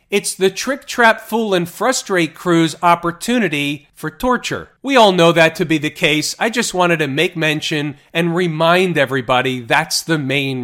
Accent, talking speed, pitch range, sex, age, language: American, 175 wpm, 150-190 Hz, male, 40-59, English